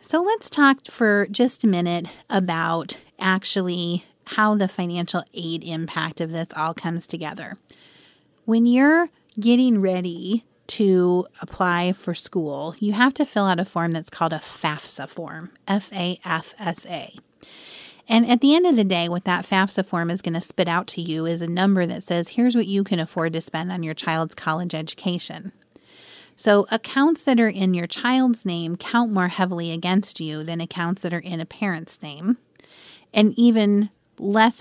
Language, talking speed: English, 170 wpm